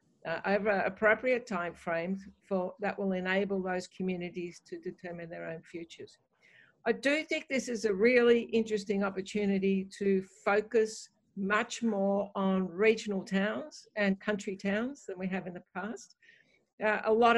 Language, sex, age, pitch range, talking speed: English, female, 60-79, 190-225 Hz, 145 wpm